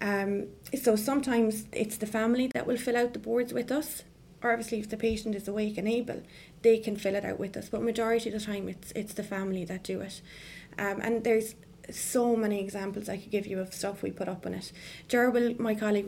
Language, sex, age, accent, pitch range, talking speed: English, female, 20-39, Irish, 200-230 Hz, 230 wpm